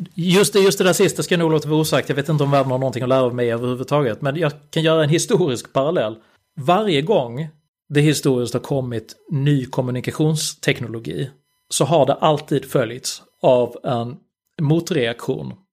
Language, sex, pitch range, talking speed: Swedish, male, 125-150 Hz, 180 wpm